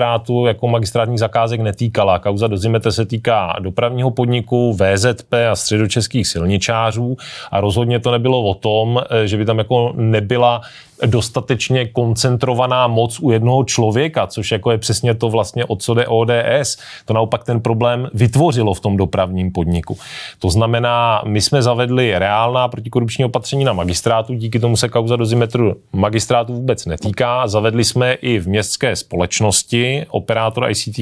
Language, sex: Czech, male